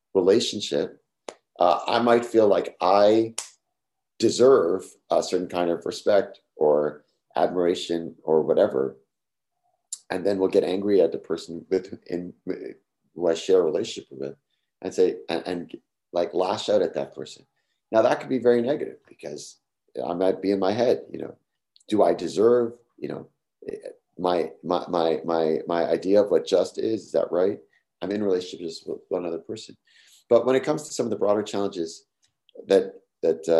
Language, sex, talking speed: English, male, 170 wpm